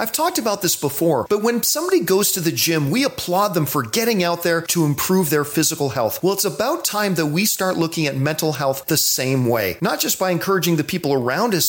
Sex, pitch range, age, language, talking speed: male, 145-200 Hz, 40-59, English, 235 wpm